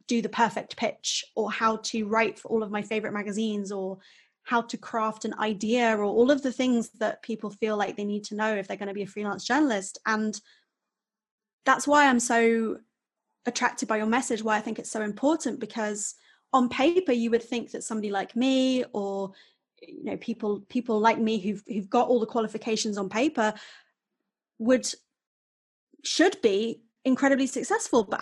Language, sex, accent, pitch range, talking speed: English, female, British, 215-255 Hz, 185 wpm